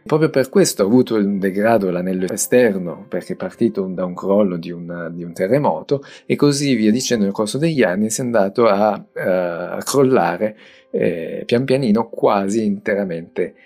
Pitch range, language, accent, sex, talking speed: 95-125 Hz, Italian, native, male, 170 wpm